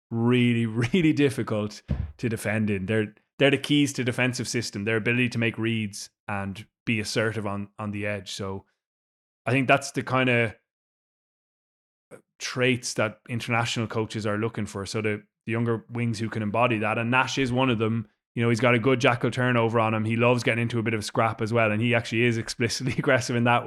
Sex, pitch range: male, 105-125 Hz